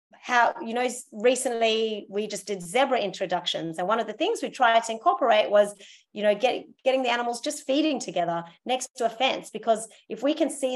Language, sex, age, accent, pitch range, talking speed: English, female, 30-49, Australian, 200-255 Hz, 205 wpm